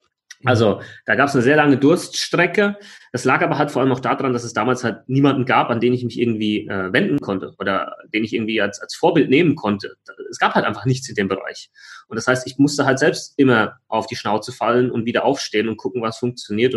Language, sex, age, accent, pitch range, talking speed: German, male, 30-49, German, 120-145 Hz, 235 wpm